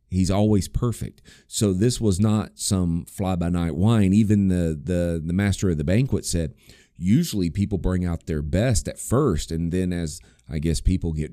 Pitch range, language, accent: 75-105 Hz, English, American